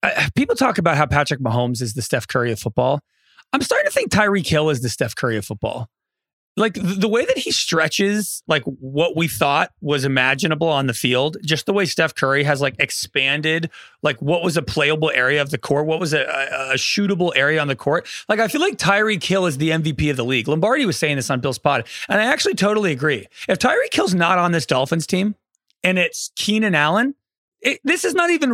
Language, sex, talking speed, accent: English, male, 225 wpm, American